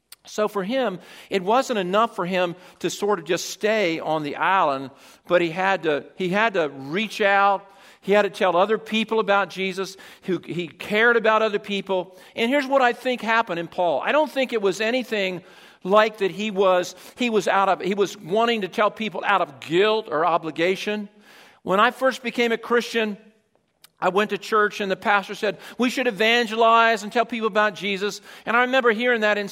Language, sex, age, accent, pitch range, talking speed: English, male, 50-69, American, 190-225 Hz, 205 wpm